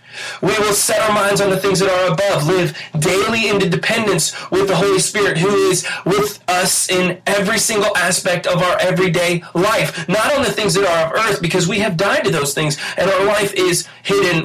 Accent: American